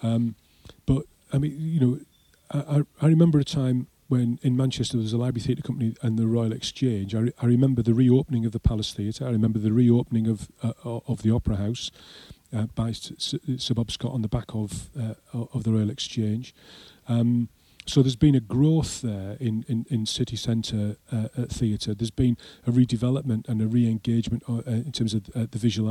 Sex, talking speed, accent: male, 195 wpm, British